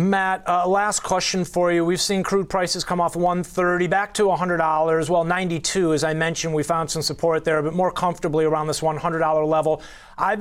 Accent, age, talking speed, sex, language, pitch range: American, 30-49, 210 wpm, male, English, 165-195 Hz